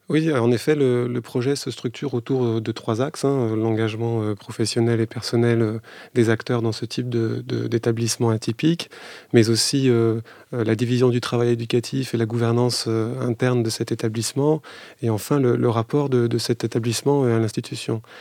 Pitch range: 115-130 Hz